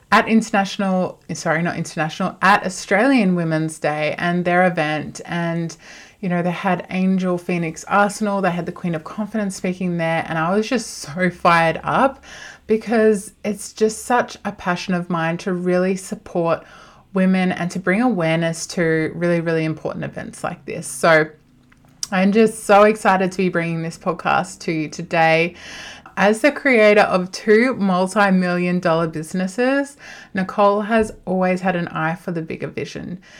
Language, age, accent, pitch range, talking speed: English, 20-39, Australian, 165-200 Hz, 160 wpm